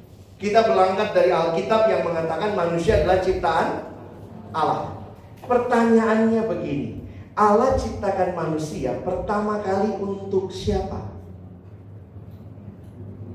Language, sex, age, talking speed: Indonesian, male, 40-59, 85 wpm